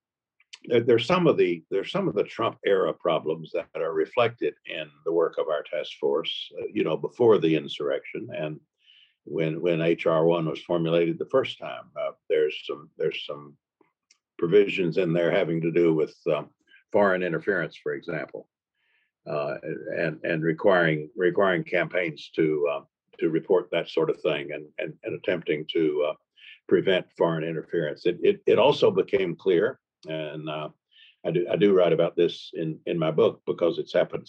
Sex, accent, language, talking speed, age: male, American, English, 170 wpm, 60-79